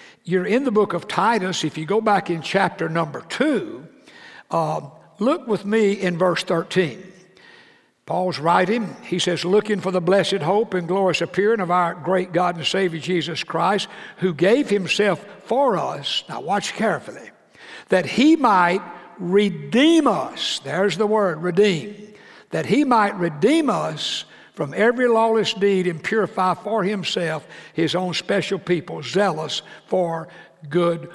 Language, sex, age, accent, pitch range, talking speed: English, male, 60-79, American, 175-215 Hz, 150 wpm